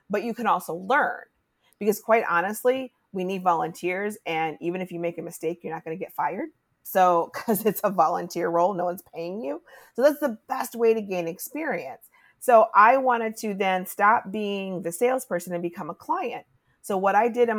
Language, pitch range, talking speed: English, 165-210 Hz, 205 wpm